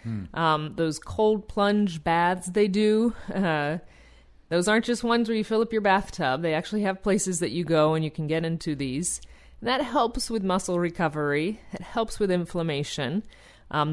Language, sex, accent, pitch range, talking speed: English, female, American, 145-190 Hz, 175 wpm